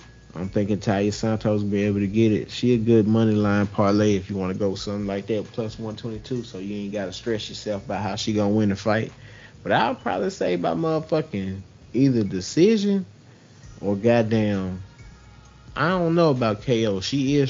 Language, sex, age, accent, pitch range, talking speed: English, male, 30-49, American, 100-130 Hz, 190 wpm